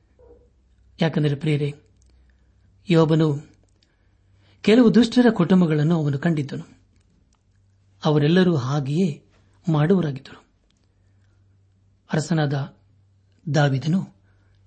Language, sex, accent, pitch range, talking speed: Kannada, male, native, 100-160 Hz, 45 wpm